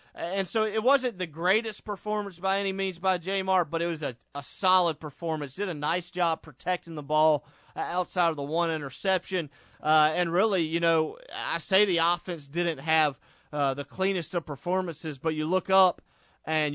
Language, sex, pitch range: English, male, 145-175 Hz